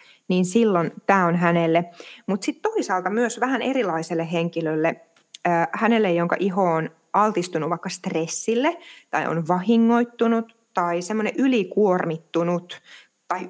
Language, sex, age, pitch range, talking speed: Finnish, female, 20-39, 165-205 Hz, 115 wpm